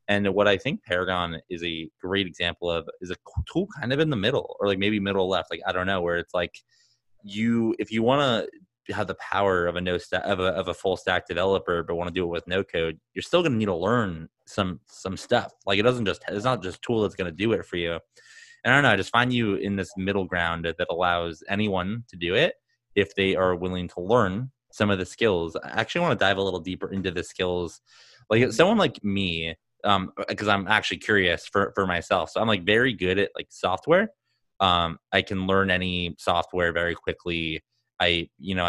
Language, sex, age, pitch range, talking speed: English, male, 20-39, 90-105 Hz, 235 wpm